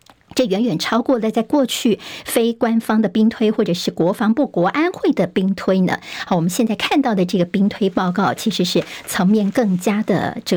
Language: Chinese